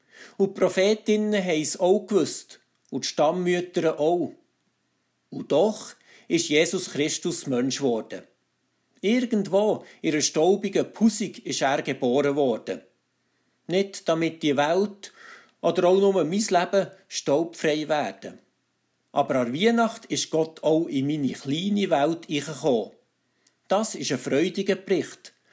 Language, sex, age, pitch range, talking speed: German, male, 50-69, 140-195 Hz, 125 wpm